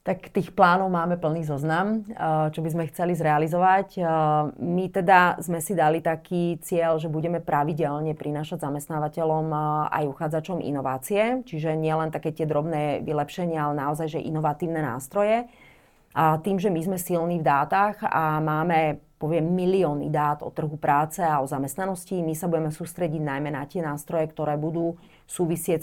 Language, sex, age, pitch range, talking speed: Slovak, female, 30-49, 155-185 Hz, 155 wpm